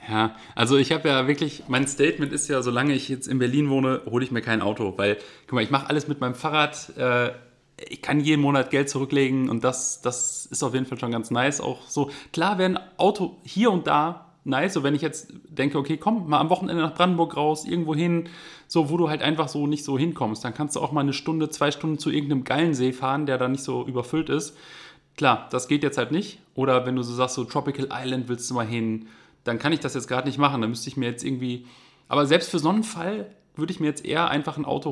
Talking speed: 255 wpm